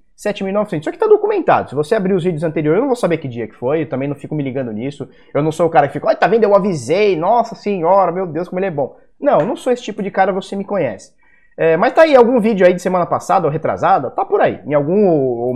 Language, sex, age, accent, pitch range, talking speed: Portuguese, male, 20-39, Brazilian, 155-215 Hz, 280 wpm